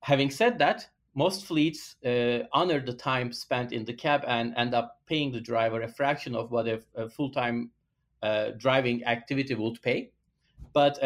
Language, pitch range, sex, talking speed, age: English, 120-145 Hz, male, 170 wpm, 40-59